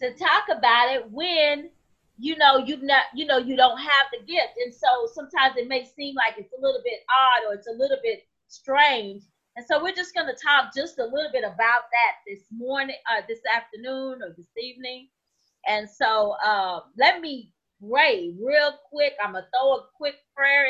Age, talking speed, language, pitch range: 30-49, 200 wpm, English, 245-335 Hz